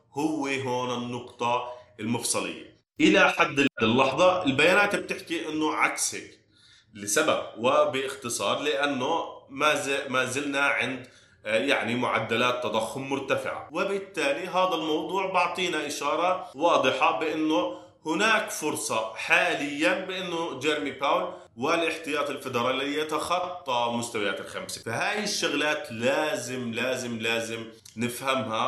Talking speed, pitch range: 95 wpm, 120-155 Hz